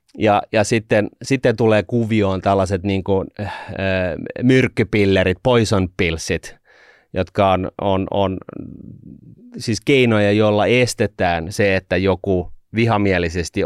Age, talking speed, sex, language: 30-49, 105 wpm, male, Finnish